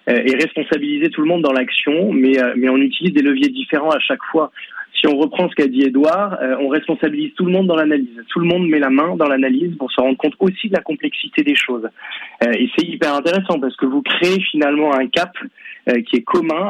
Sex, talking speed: male, 225 wpm